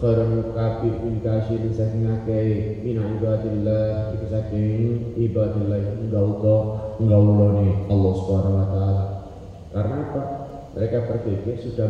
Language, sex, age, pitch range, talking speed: Indonesian, male, 30-49, 100-115 Hz, 50 wpm